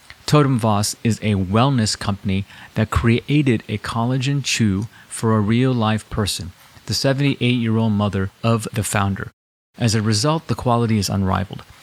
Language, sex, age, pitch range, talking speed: English, male, 30-49, 105-125 Hz, 140 wpm